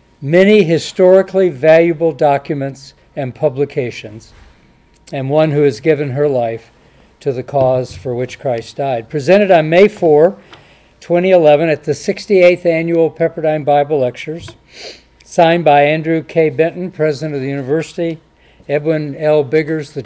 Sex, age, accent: male, 50-69, American